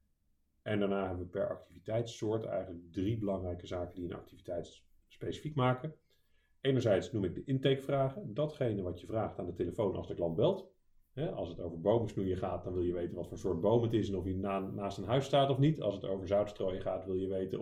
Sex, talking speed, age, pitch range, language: male, 220 wpm, 40-59, 90-120 Hz, Dutch